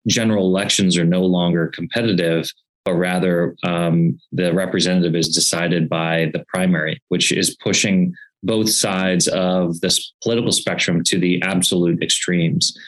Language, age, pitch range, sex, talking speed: English, 30-49, 85-100 Hz, male, 135 wpm